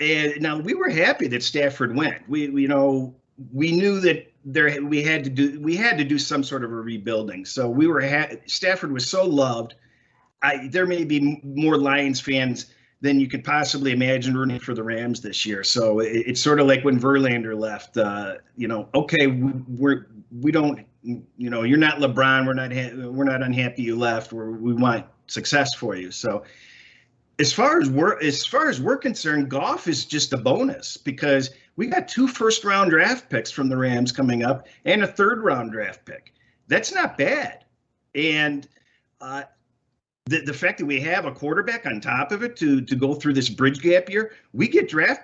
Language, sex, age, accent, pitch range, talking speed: English, male, 40-59, American, 125-155 Hz, 200 wpm